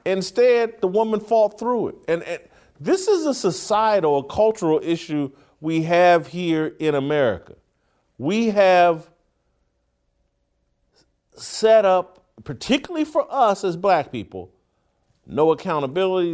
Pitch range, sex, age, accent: 145-220 Hz, male, 50-69, American